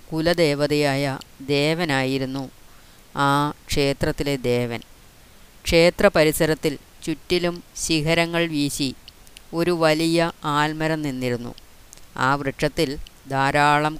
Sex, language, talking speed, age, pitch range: female, Malayalam, 75 wpm, 30-49, 135-160 Hz